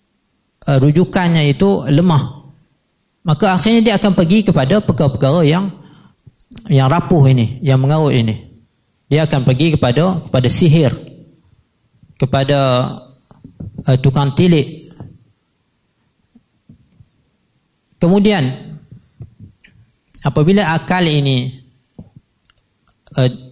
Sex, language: male, Malay